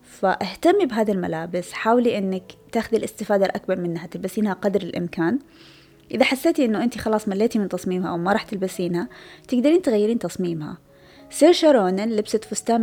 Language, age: Arabic, 20-39